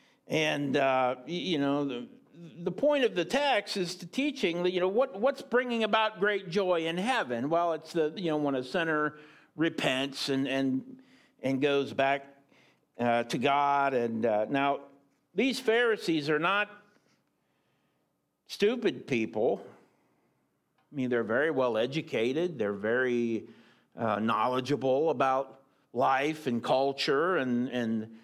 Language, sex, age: English, male, 50-69